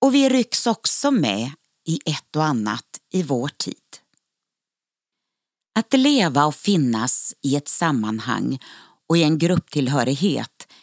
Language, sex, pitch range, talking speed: Swedish, female, 135-190 Hz, 125 wpm